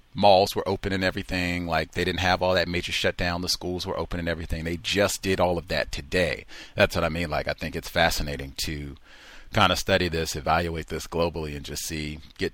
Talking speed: 225 wpm